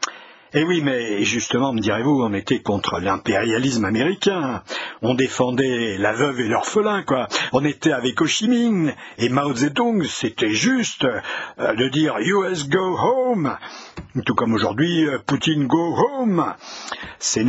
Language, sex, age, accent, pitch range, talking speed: French, male, 60-79, French, 125-175 Hz, 145 wpm